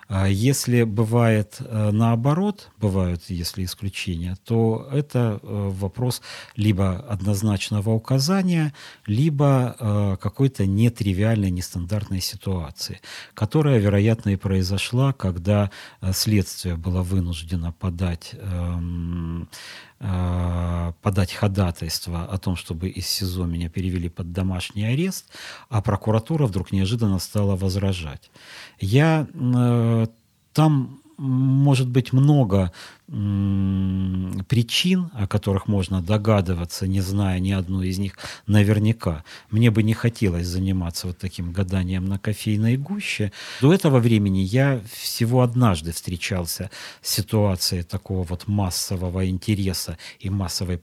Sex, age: male, 40-59